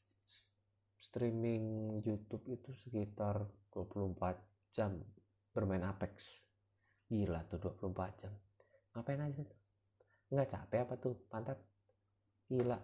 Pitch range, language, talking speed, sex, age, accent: 100-110 Hz, Indonesian, 100 wpm, male, 30-49, native